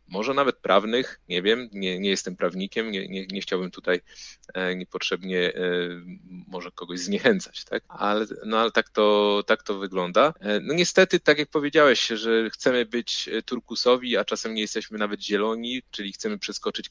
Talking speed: 170 wpm